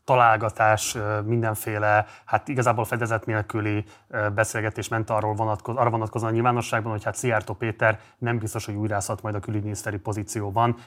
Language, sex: Hungarian, male